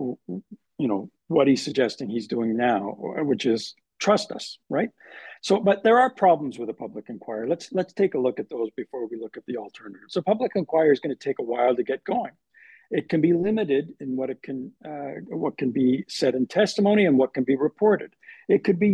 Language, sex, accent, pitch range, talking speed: English, male, American, 145-200 Hz, 220 wpm